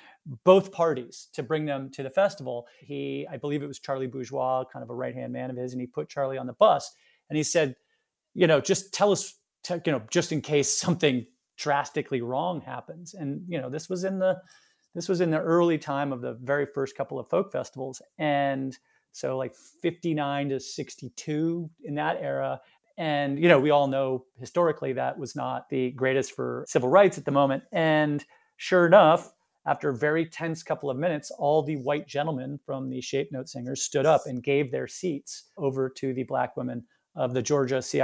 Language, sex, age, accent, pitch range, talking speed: English, male, 30-49, American, 135-170 Hz, 205 wpm